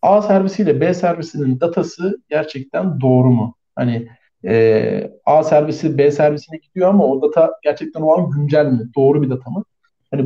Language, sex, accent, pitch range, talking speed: Turkish, male, native, 140-210 Hz, 165 wpm